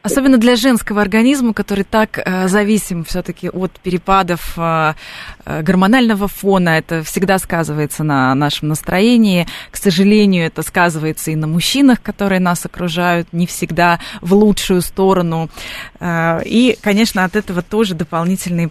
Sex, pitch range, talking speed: female, 180-225 Hz, 130 wpm